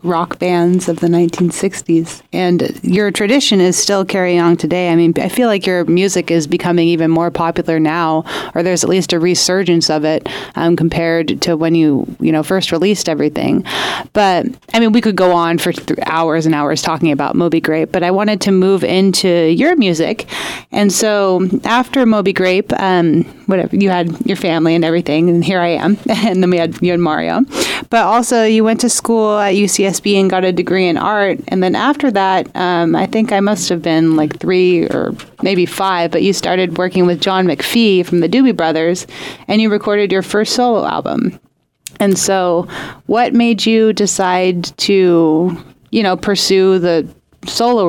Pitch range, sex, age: 170-200 Hz, female, 30-49